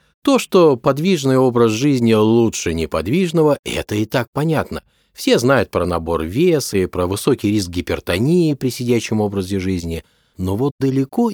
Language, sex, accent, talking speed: Russian, male, native, 150 wpm